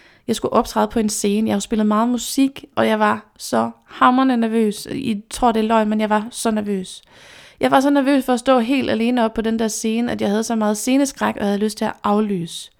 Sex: female